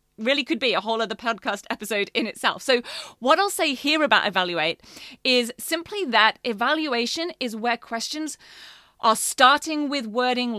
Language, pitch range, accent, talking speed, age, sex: English, 220-285 Hz, British, 160 wpm, 30-49, female